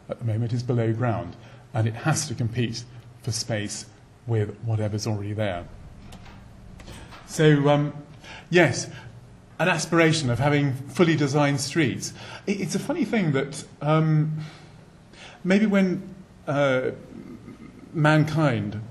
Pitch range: 120-150 Hz